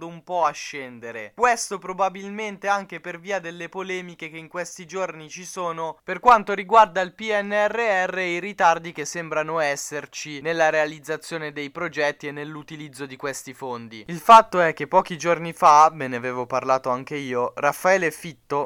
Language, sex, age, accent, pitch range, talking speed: Italian, male, 20-39, native, 125-165 Hz, 165 wpm